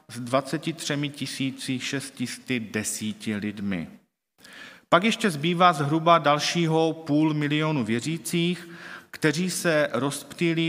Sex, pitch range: male, 125-170 Hz